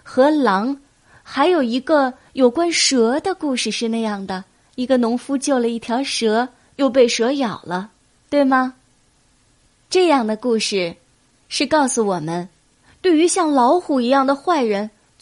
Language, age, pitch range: Chinese, 20-39, 210-285 Hz